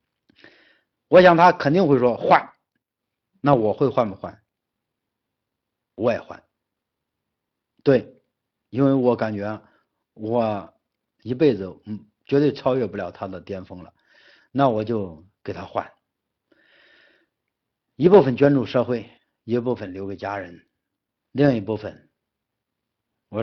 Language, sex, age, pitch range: Chinese, male, 50-69, 105-140 Hz